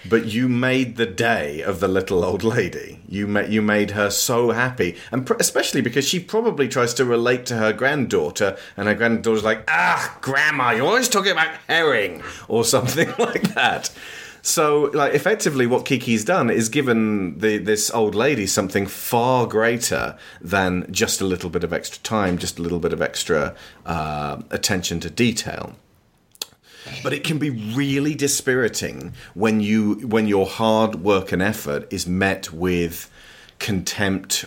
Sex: male